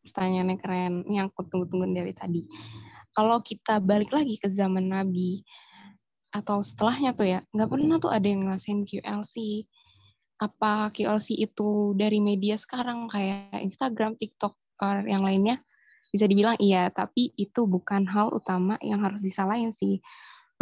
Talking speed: 140 wpm